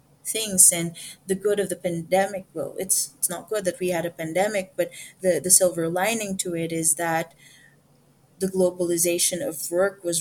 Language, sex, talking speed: English, female, 180 wpm